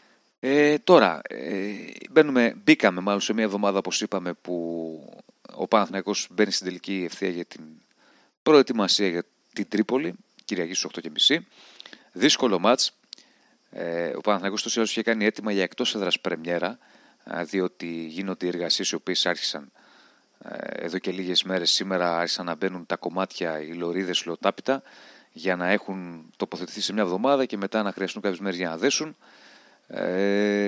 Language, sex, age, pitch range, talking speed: Greek, male, 30-49, 90-115 Hz, 145 wpm